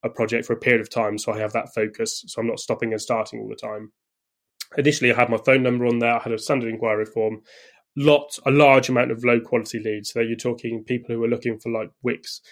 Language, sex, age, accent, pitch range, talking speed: English, male, 20-39, British, 115-130 Hz, 260 wpm